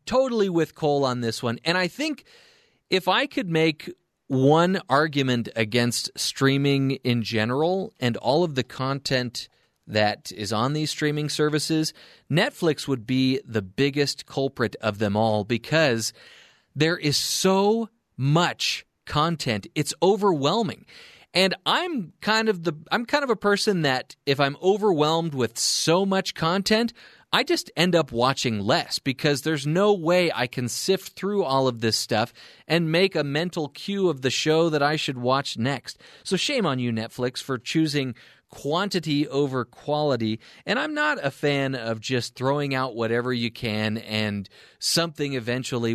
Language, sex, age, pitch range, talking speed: English, male, 30-49, 125-180 Hz, 160 wpm